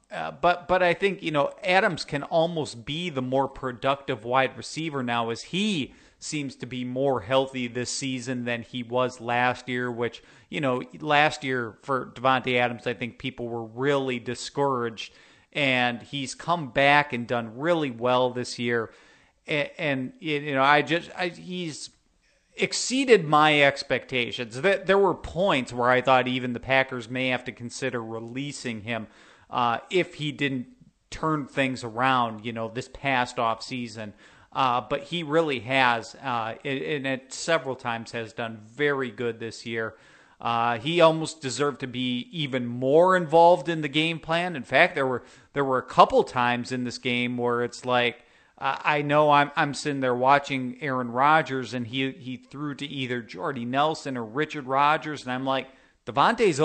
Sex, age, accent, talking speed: male, 40-59, American, 175 wpm